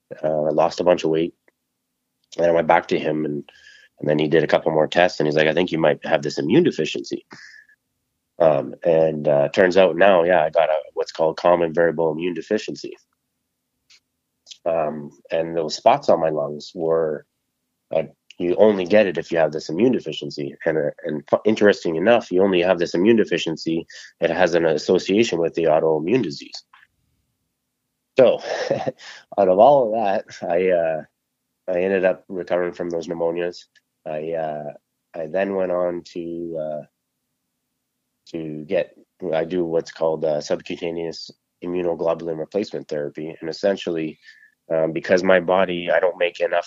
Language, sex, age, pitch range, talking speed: English, male, 30-49, 80-90 Hz, 170 wpm